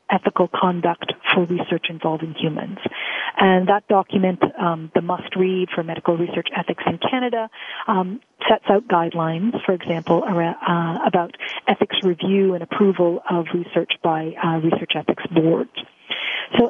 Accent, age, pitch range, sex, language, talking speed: American, 40-59, 170-220 Hz, female, English, 145 wpm